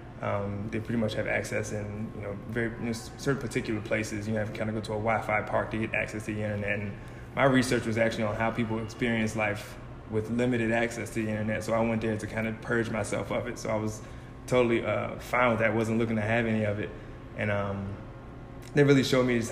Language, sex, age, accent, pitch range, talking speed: English, male, 20-39, American, 110-115 Hz, 255 wpm